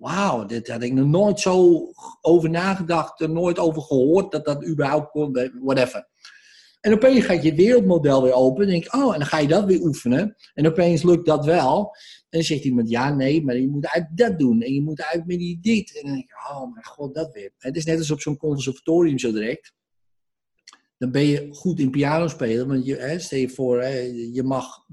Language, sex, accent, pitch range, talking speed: Dutch, male, Dutch, 130-180 Hz, 225 wpm